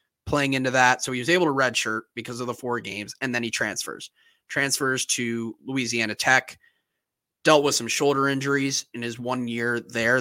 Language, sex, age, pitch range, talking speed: English, male, 30-49, 120-145 Hz, 190 wpm